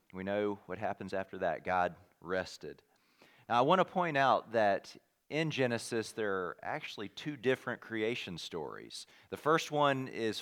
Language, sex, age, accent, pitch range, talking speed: English, male, 40-59, American, 100-140 Hz, 160 wpm